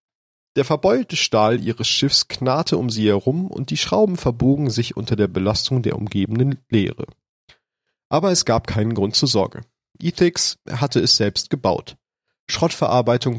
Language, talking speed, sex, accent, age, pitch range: German, 150 wpm, male, German, 40-59, 110-140 Hz